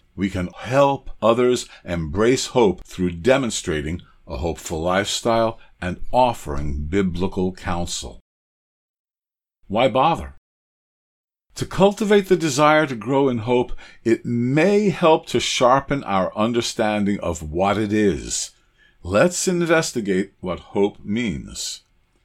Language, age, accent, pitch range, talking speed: English, 50-69, American, 90-125 Hz, 110 wpm